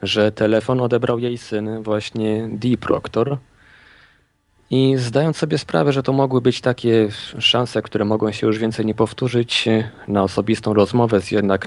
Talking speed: 155 wpm